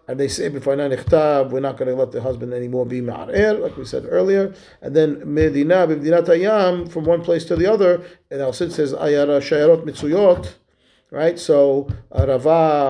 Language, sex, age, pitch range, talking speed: English, male, 40-59, 130-160 Hz, 160 wpm